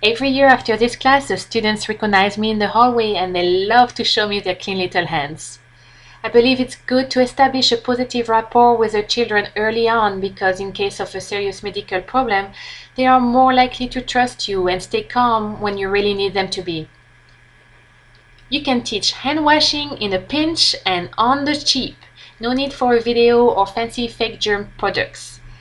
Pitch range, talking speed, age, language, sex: 195-245 Hz, 195 wpm, 20-39, English, female